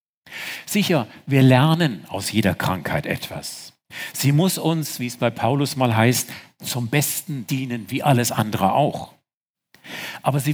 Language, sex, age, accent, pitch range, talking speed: German, male, 50-69, German, 120-165 Hz, 140 wpm